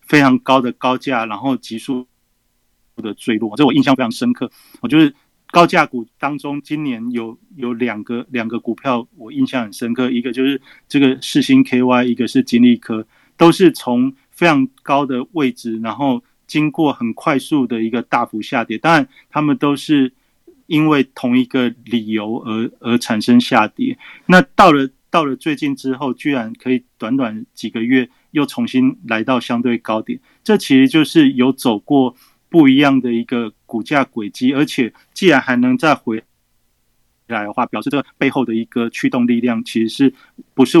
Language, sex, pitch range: Chinese, male, 115-150 Hz